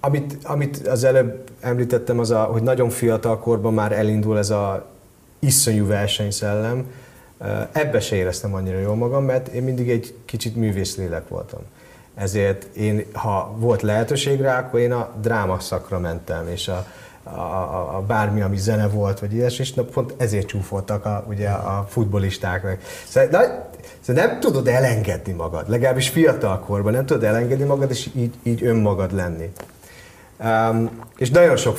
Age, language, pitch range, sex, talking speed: 30-49, Hungarian, 100-125 Hz, male, 160 wpm